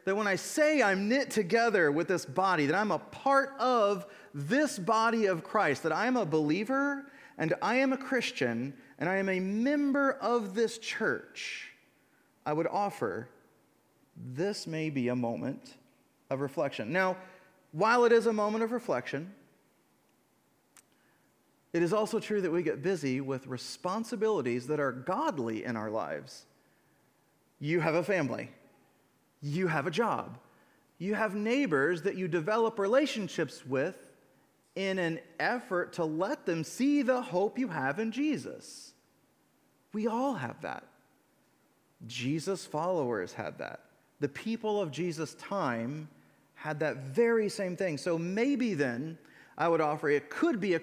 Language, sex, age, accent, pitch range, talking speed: English, male, 30-49, American, 155-225 Hz, 150 wpm